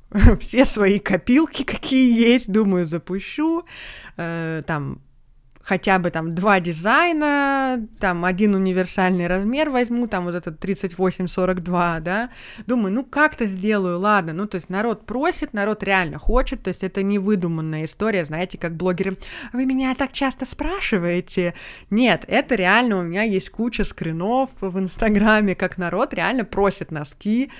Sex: female